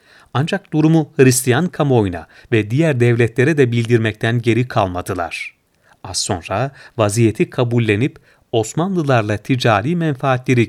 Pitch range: 110-140 Hz